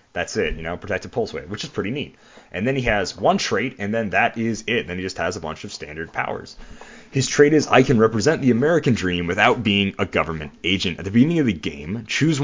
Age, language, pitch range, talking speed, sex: 30-49, English, 90-130 Hz, 250 wpm, male